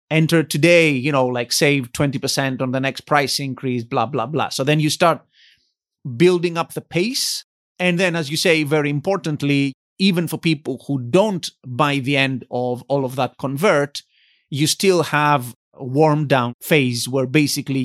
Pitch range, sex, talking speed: 130-170 Hz, male, 175 wpm